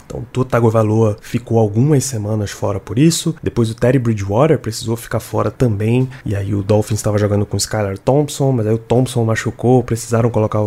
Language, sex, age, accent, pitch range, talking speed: Portuguese, male, 20-39, Brazilian, 105-130 Hz, 185 wpm